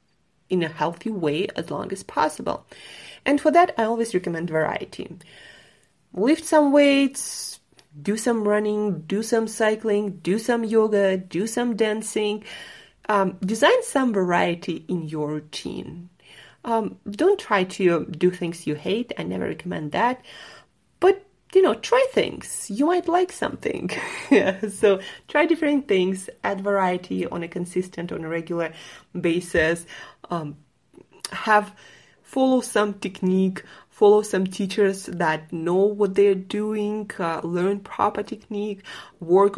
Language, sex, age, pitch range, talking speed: English, female, 30-49, 175-230 Hz, 135 wpm